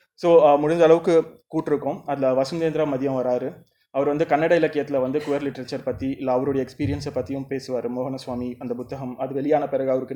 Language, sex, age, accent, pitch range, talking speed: Tamil, male, 20-39, native, 130-150 Hz, 165 wpm